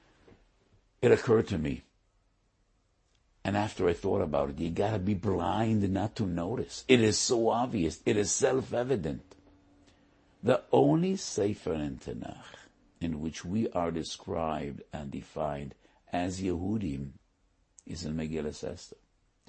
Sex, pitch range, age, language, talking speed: male, 85-105 Hz, 60-79, English, 130 wpm